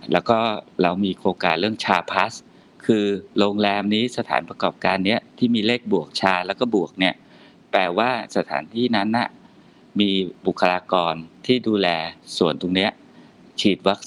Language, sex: Thai, male